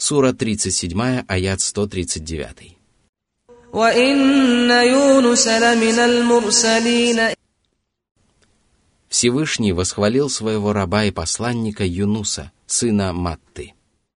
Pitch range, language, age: 90-125 Hz, Russian, 30-49